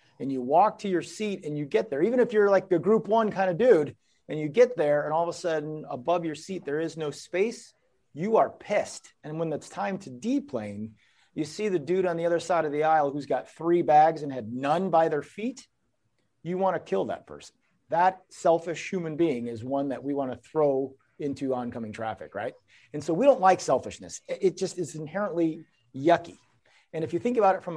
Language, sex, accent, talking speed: English, male, American, 225 wpm